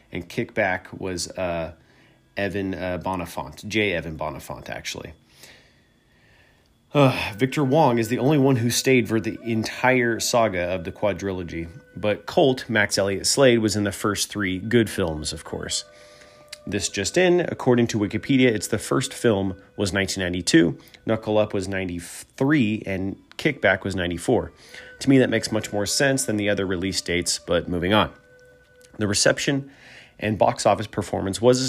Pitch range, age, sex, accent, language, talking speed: 95-120 Hz, 30-49, male, American, English, 160 wpm